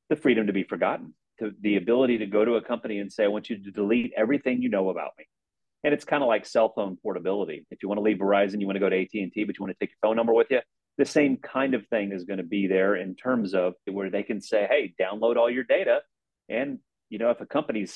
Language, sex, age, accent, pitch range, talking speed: English, male, 30-49, American, 100-125 Hz, 275 wpm